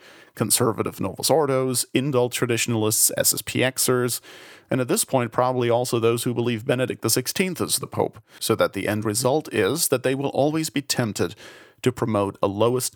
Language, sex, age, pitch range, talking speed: English, male, 40-59, 115-145 Hz, 160 wpm